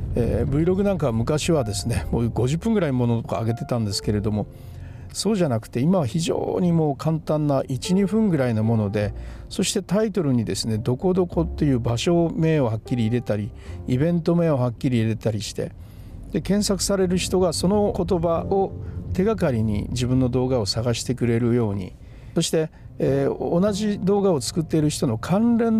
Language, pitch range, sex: Japanese, 110-175 Hz, male